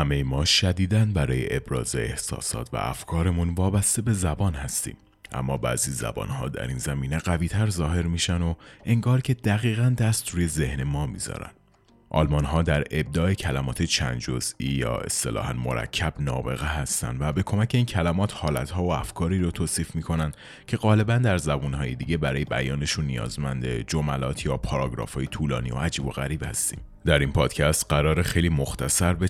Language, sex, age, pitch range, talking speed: Persian, male, 30-49, 70-90 Hz, 170 wpm